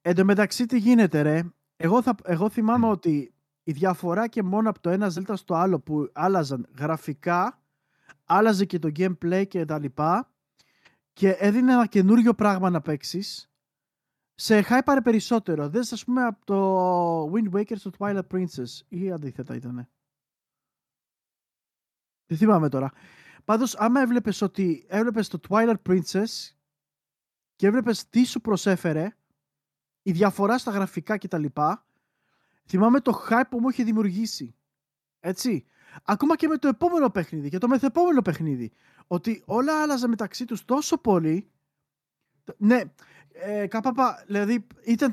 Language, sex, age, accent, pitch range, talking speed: Greek, male, 20-39, native, 175-235 Hz, 140 wpm